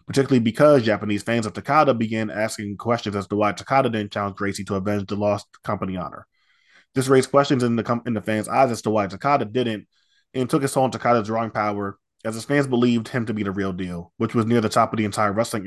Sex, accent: male, American